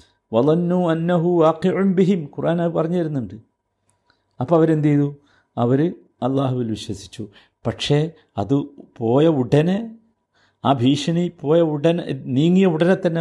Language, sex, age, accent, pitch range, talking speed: Malayalam, male, 50-69, native, 135-170 Hz, 110 wpm